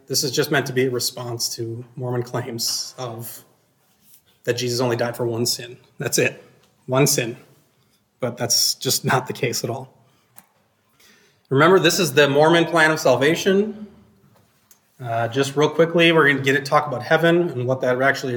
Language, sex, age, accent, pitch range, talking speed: English, male, 30-49, American, 125-155 Hz, 180 wpm